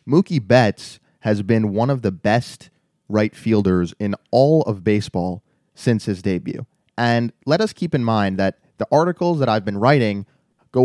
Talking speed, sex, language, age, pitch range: 170 wpm, male, English, 20-39, 110-145 Hz